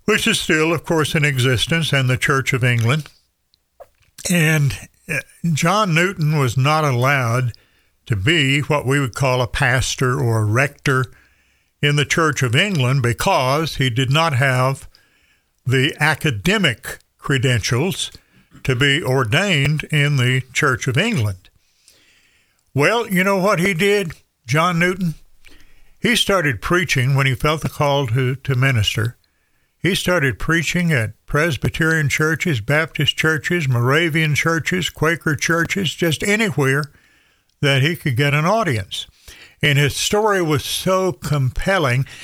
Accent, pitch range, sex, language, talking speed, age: American, 130-170 Hz, male, English, 135 wpm, 60-79